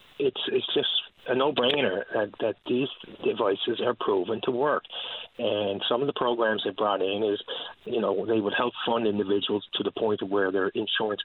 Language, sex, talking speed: English, male, 195 wpm